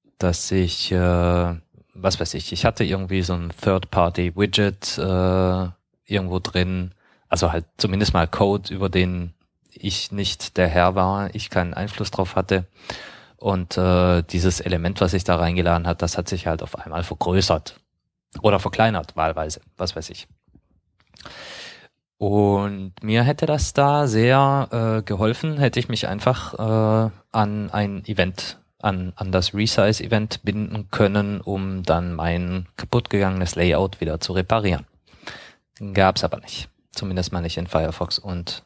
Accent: German